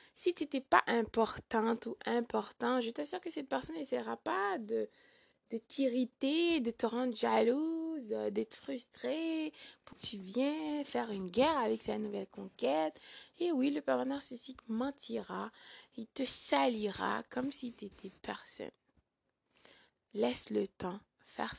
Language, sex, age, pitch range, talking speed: French, female, 20-39, 215-280 Hz, 140 wpm